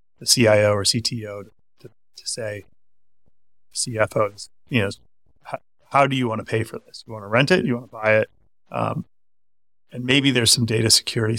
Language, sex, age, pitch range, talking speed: English, male, 30-49, 95-120 Hz, 195 wpm